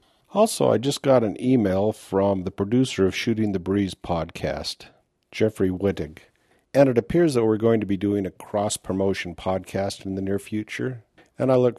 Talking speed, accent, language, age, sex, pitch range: 180 wpm, American, English, 50-69, male, 95-120 Hz